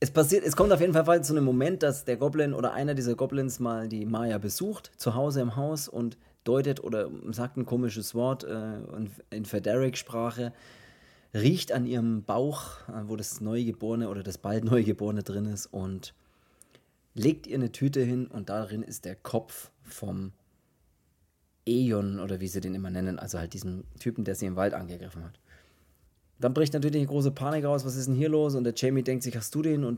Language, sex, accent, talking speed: German, male, German, 200 wpm